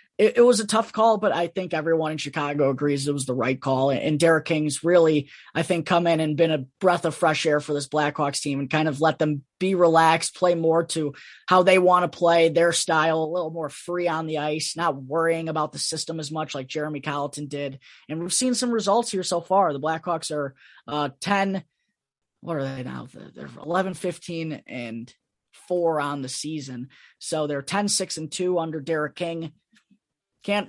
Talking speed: 205 wpm